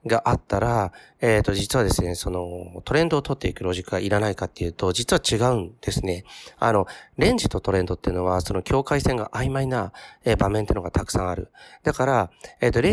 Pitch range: 95-125 Hz